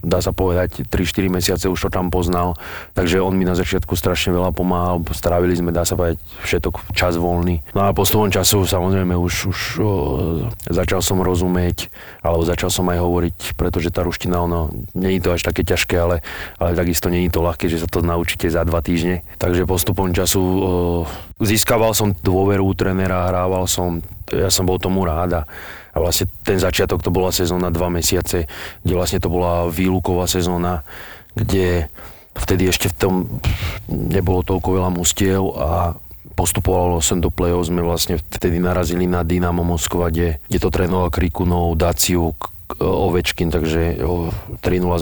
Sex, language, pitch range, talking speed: male, Slovak, 85-95 Hz, 170 wpm